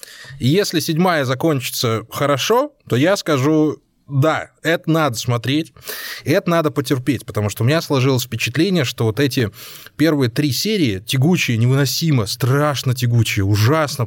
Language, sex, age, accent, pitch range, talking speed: Russian, male, 20-39, native, 120-160 Hz, 130 wpm